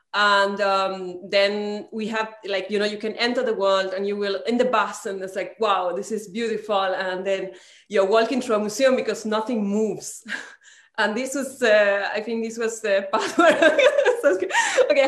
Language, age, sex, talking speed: English, 20-39, female, 185 wpm